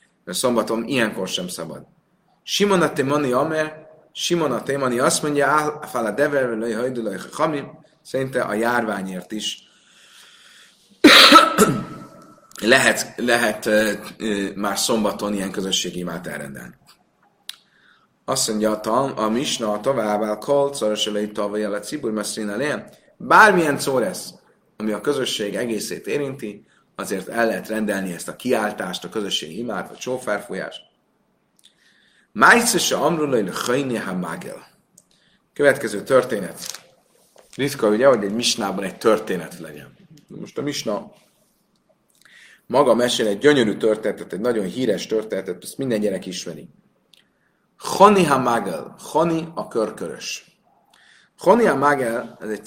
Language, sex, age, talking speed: Hungarian, male, 30-49, 120 wpm